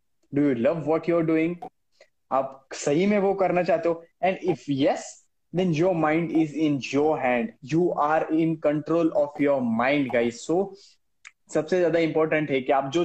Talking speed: 185 wpm